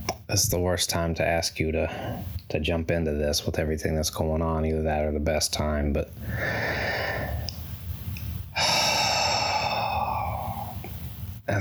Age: 20-39